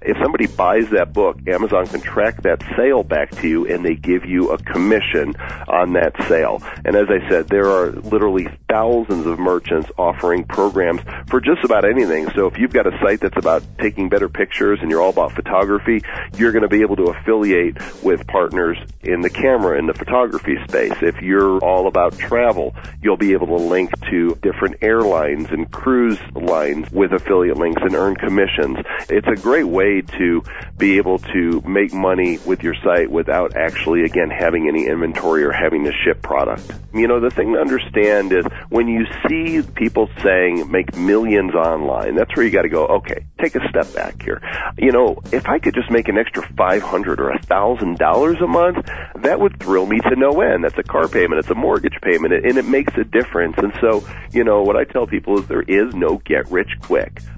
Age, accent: 40-59, American